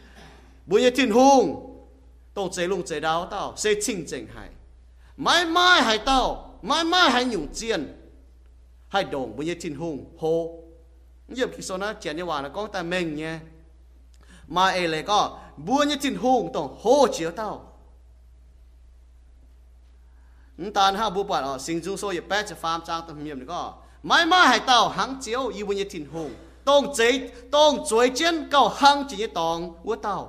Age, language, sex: 30-49, English, male